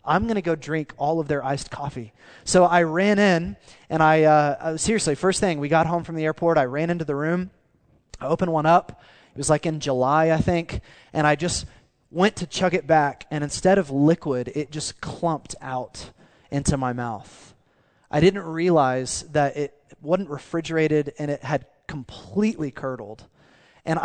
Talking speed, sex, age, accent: 180 wpm, male, 20-39, American